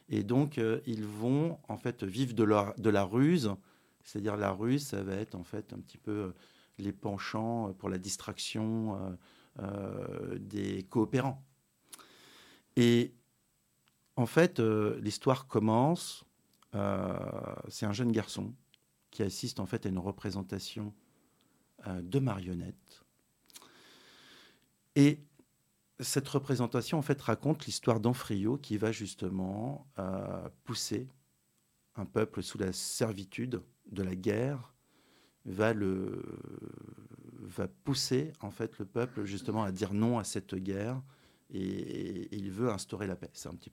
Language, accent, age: French, French, 50-69